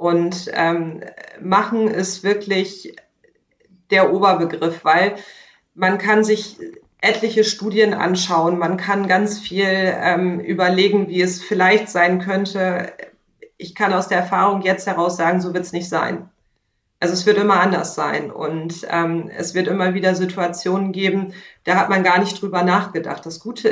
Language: German